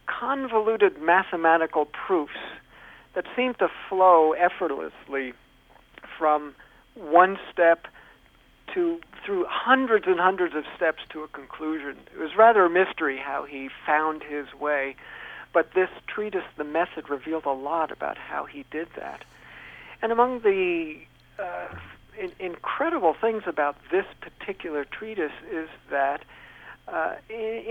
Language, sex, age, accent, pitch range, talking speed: English, male, 60-79, American, 145-220 Hz, 125 wpm